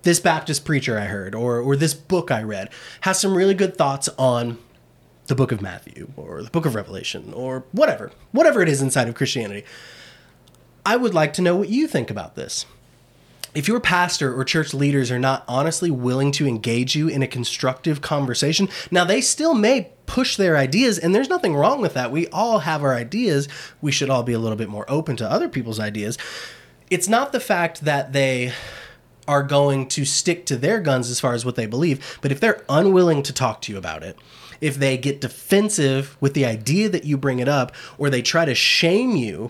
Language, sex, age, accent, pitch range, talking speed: English, male, 20-39, American, 120-160 Hz, 210 wpm